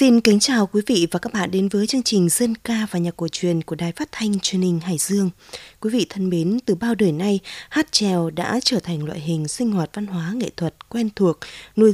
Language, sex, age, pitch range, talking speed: Vietnamese, female, 20-39, 180-230 Hz, 250 wpm